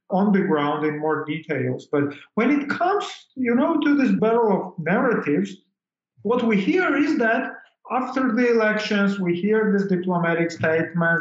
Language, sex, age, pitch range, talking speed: English, male, 40-59, 160-215 Hz, 160 wpm